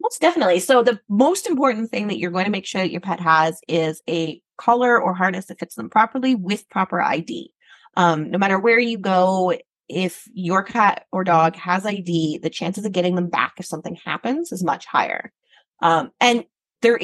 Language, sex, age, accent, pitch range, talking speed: English, female, 30-49, American, 175-225 Hz, 200 wpm